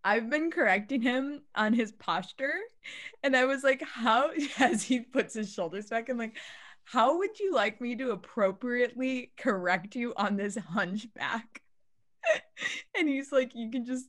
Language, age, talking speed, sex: English, 20-39, 160 wpm, female